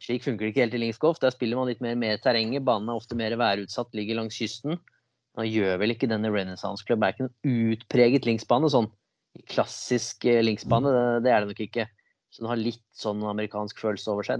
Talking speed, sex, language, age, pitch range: 200 wpm, male, English, 20-39, 105-120 Hz